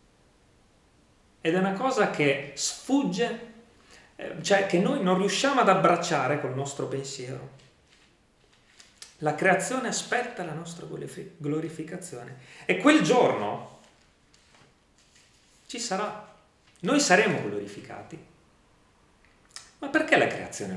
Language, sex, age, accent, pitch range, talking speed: Italian, male, 40-59, native, 115-185 Hz, 100 wpm